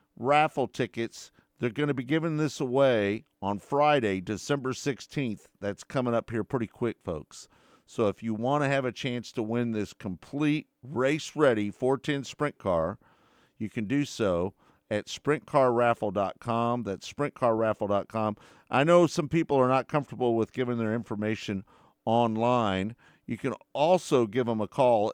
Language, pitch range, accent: English, 105-140 Hz, American